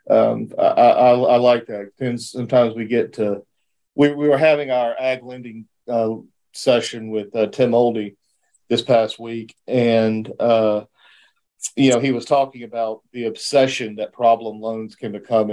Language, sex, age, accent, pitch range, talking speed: English, male, 50-69, American, 110-130 Hz, 160 wpm